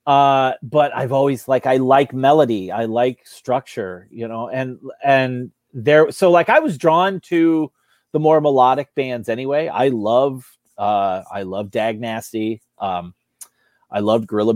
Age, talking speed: 30-49, 155 wpm